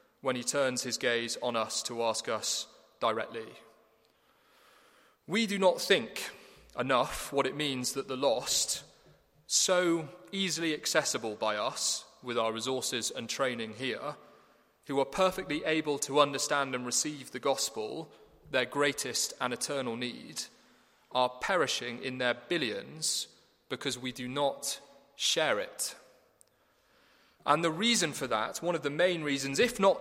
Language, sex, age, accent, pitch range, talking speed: English, male, 30-49, British, 125-160 Hz, 140 wpm